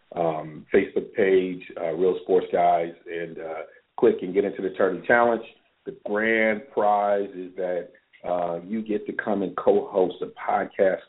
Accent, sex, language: American, male, English